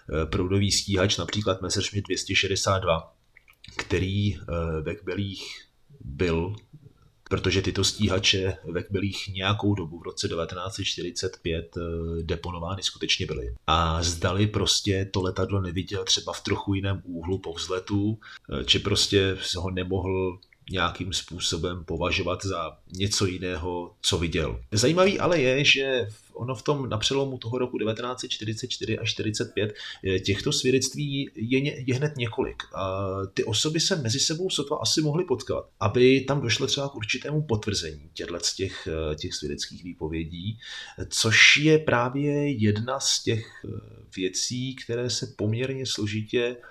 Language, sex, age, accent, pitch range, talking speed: Czech, male, 30-49, native, 95-120 Hz, 125 wpm